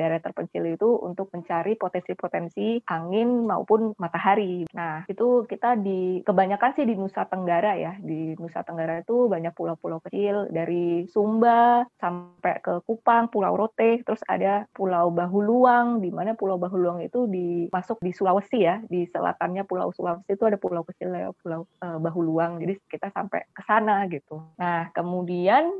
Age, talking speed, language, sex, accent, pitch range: 20-39, 155 wpm, Indonesian, female, native, 175-230 Hz